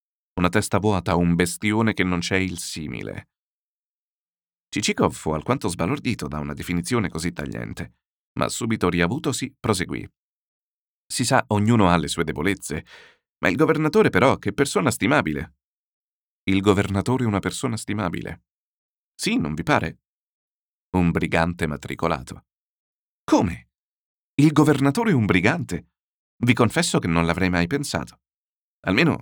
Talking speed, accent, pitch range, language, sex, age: 130 wpm, native, 80-105 Hz, Italian, male, 40-59